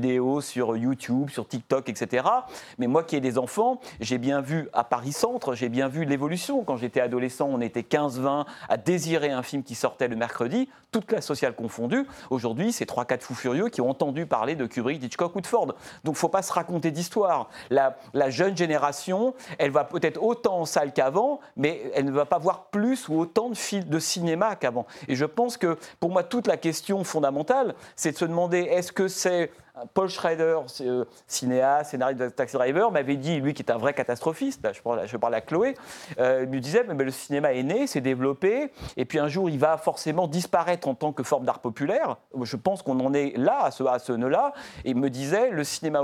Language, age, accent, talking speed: French, 40-59, French, 215 wpm